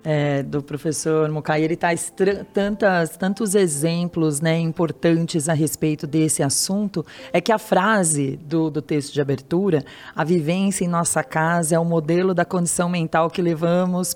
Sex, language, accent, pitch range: female, Portuguese, Brazilian, 170-240 Hz